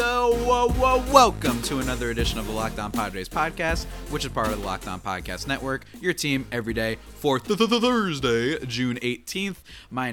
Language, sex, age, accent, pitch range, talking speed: English, male, 30-49, American, 105-135 Hz, 180 wpm